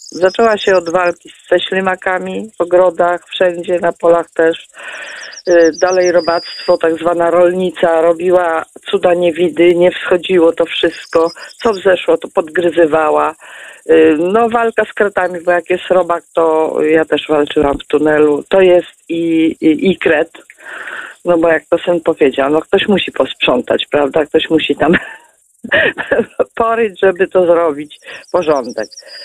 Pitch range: 160-190 Hz